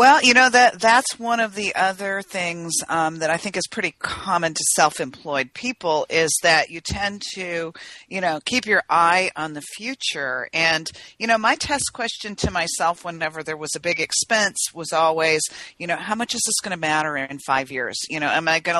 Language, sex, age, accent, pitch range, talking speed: English, female, 40-59, American, 155-195 Hz, 210 wpm